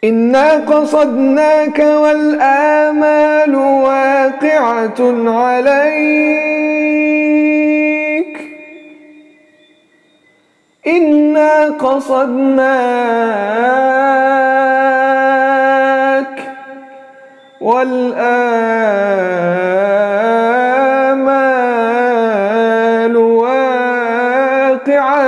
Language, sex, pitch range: English, male, 240-280 Hz